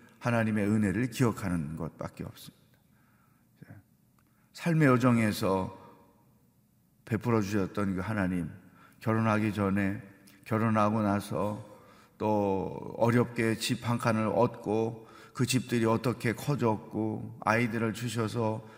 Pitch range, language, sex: 110-155 Hz, Korean, male